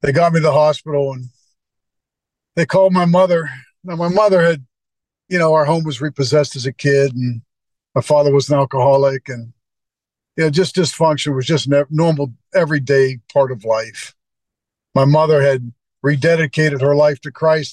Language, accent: English, American